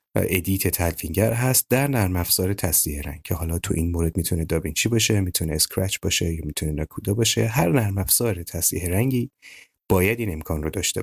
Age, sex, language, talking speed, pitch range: 30-49, male, Persian, 180 wpm, 85-110 Hz